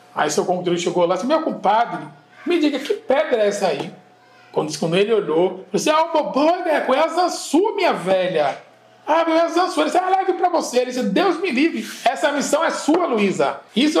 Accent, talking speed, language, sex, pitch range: Brazilian, 210 wpm, Portuguese, male, 185-265 Hz